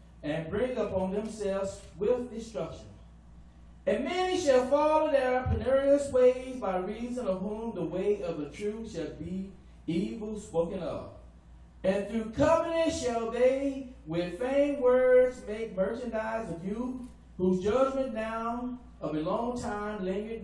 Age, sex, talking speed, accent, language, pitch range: 40-59, male, 140 wpm, American, English, 180-275 Hz